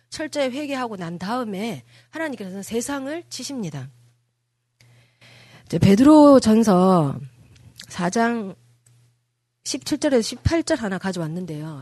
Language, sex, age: Korean, female, 30-49